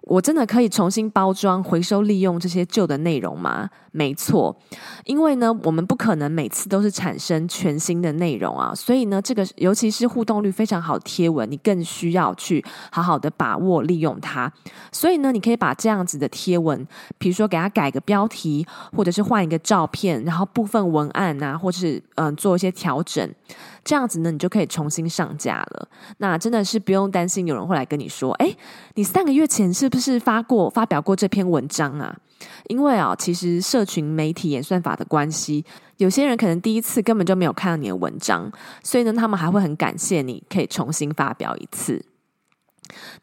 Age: 20-39